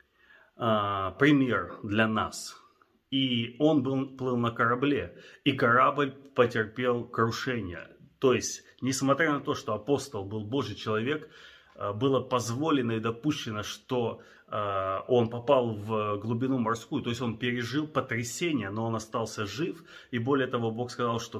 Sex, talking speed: male, 135 wpm